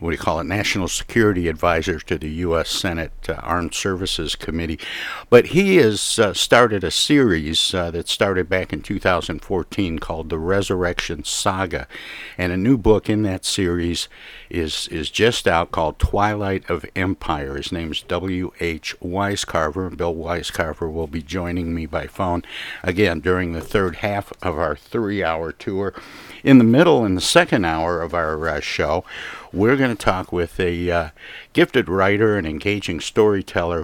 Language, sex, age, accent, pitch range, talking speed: English, male, 60-79, American, 85-100 Hz, 165 wpm